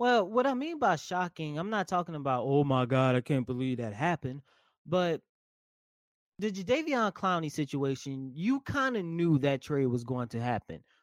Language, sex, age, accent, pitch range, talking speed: English, male, 20-39, American, 130-170 Hz, 180 wpm